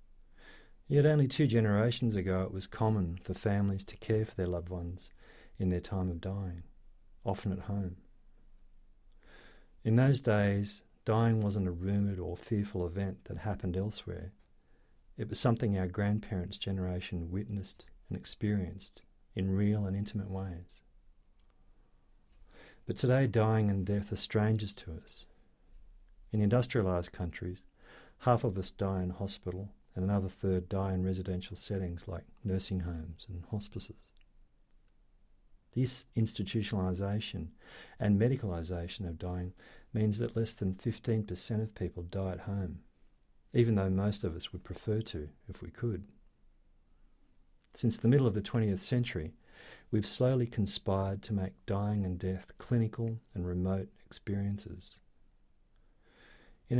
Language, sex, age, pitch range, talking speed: English, male, 40-59, 90-110 Hz, 135 wpm